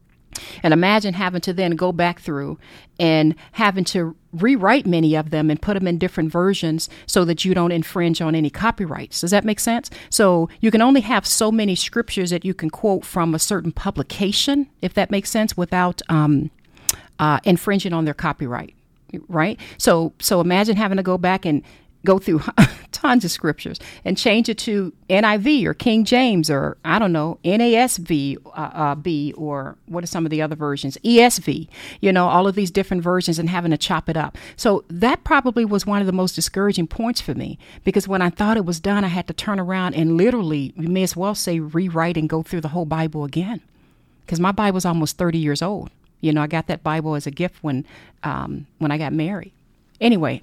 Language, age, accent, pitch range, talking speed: English, 40-59, American, 160-200 Hz, 210 wpm